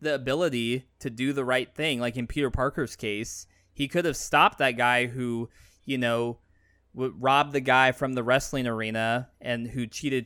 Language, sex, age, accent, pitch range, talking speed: English, male, 20-39, American, 115-145 Hz, 185 wpm